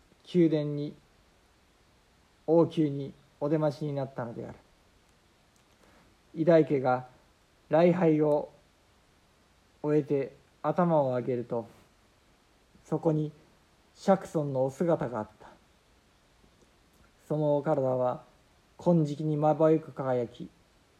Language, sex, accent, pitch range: Japanese, male, native, 130-160 Hz